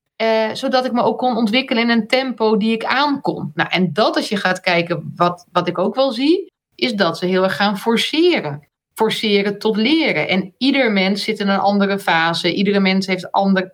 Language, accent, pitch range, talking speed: Dutch, Dutch, 180-245 Hz, 215 wpm